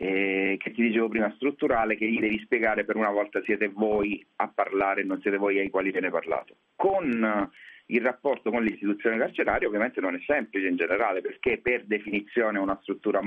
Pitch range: 105-125 Hz